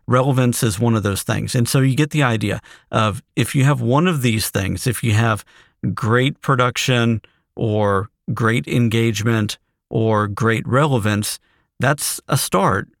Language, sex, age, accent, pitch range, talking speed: English, male, 50-69, American, 105-130 Hz, 155 wpm